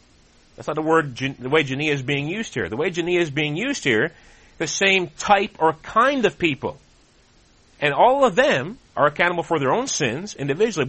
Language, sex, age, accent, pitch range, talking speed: English, male, 40-59, American, 120-180 Hz, 200 wpm